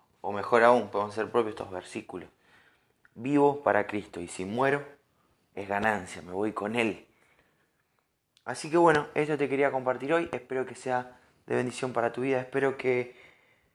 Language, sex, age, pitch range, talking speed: Spanish, male, 20-39, 105-125 Hz, 165 wpm